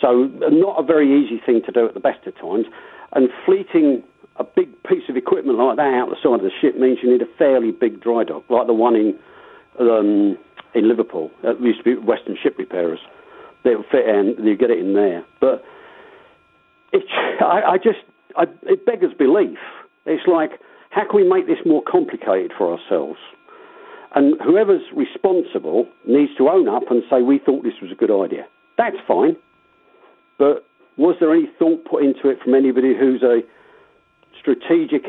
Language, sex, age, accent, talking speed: English, male, 50-69, British, 190 wpm